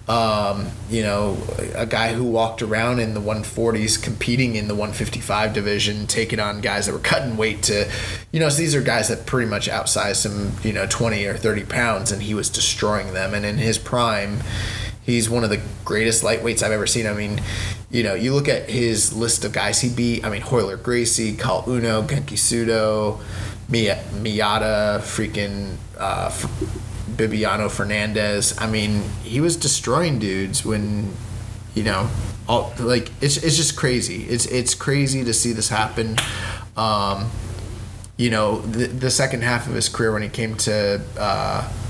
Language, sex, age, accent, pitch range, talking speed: English, male, 20-39, American, 105-120 Hz, 175 wpm